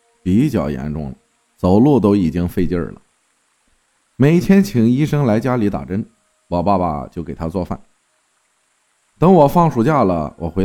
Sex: male